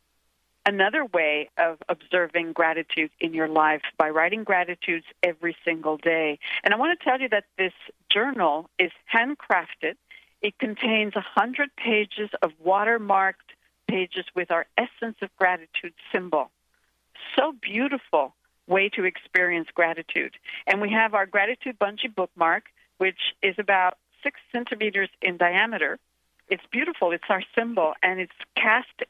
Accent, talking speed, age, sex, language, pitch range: American, 135 wpm, 60-79, female, English, 170-210 Hz